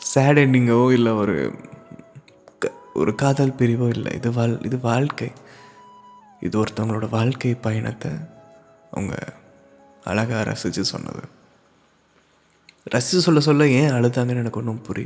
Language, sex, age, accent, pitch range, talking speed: Tamil, male, 20-39, native, 110-140 Hz, 110 wpm